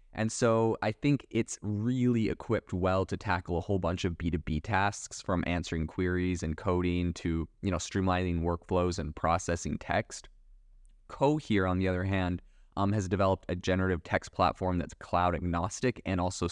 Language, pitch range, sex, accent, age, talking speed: English, 85-105 Hz, male, American, 20-39, 175 wpm